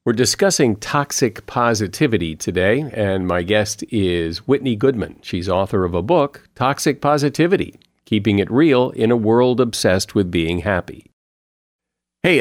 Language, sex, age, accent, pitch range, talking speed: English, male, 50-69, American, 95-130 Hz, 140 wpm